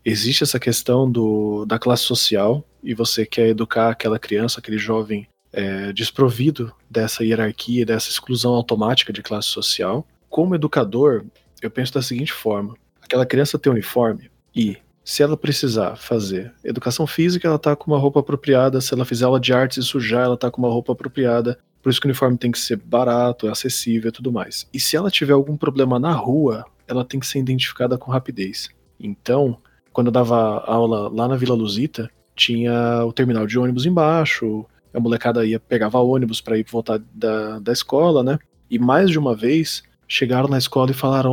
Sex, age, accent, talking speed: male, 20-39, Brazilian, 185 wpm